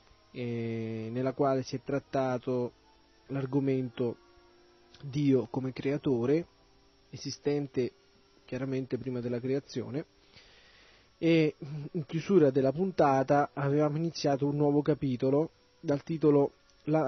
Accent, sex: native, male